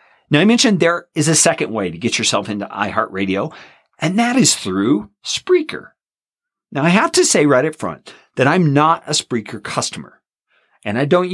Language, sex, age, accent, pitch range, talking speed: English, male, 50-69, American, 120-175 Hz, 185 wpm